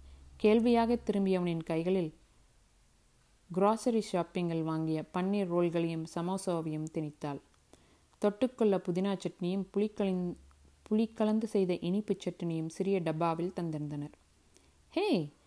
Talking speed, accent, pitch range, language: 85 wpm, native, 160-190 Hz, Tamil